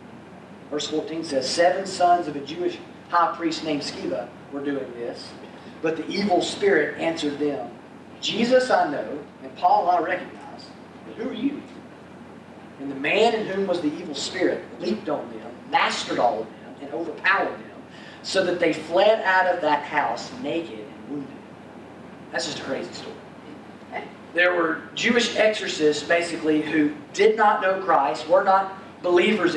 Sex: male